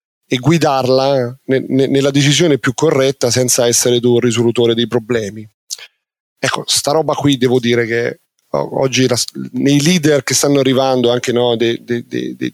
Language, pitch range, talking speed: Italian, 125-165 Hz, 145 wpm